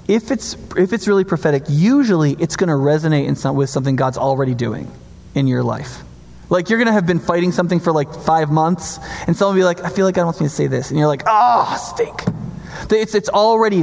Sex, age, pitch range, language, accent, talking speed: male, 20-39, 150-220 Hz, English, American, 240 wpm